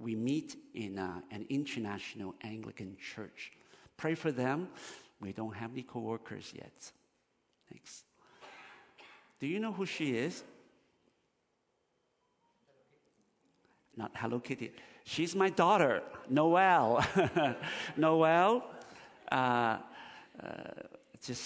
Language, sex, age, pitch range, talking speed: English, male, 50-69, 105-140 Hz, 90 wpm